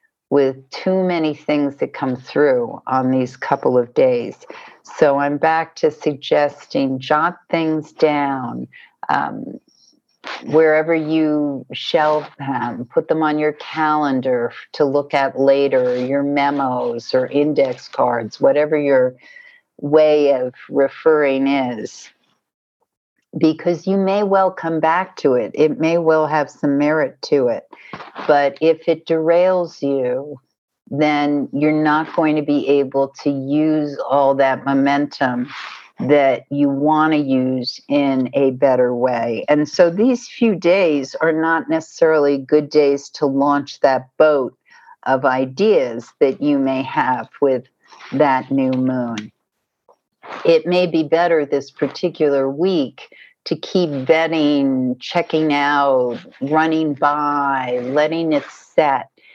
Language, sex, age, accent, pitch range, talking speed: English, female, 50-69, American, 135-165 Hz, 130 wpm